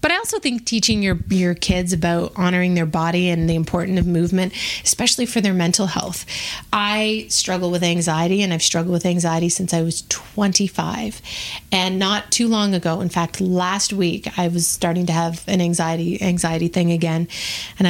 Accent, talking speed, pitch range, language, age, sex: American, 185 wpm, 170-200 Hz, English, 30-49, female